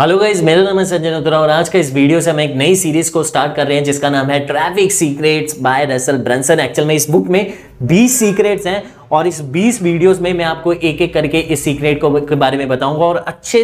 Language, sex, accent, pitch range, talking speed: Hindi, male, native, 135-185 Hz, 245 wpm